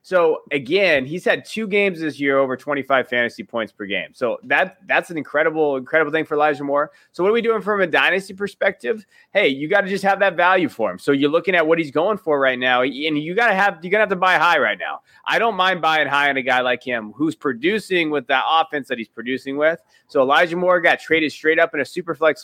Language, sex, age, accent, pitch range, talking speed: English, male, 30-49, American, 135-185 Hz, 255 wpm